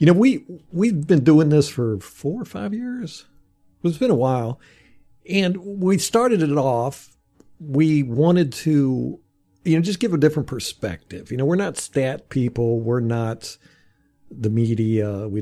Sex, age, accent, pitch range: male, 50-69, American, 105-150 Hz